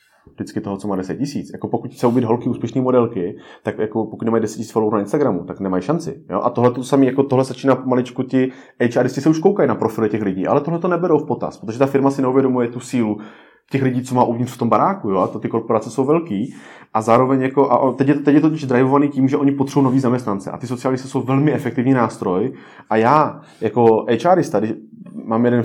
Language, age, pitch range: Czech, 30-49, 115-135 Hz